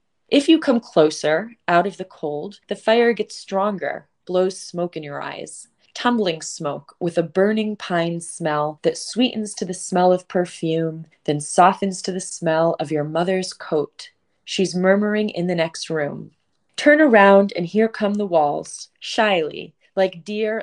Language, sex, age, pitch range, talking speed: English, female, 20-39, 165-210 Hz, 165 wpm